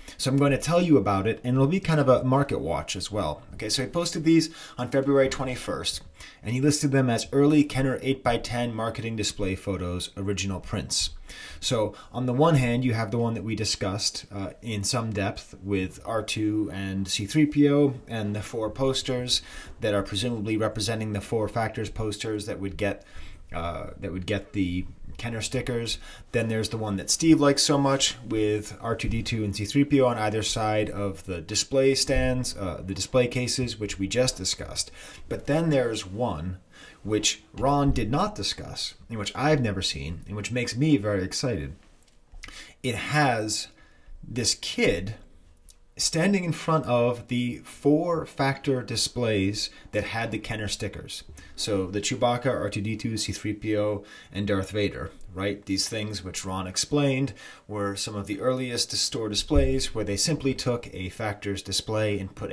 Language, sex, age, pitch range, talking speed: English, male, 30-49, 100-130 Hz, 170 wpm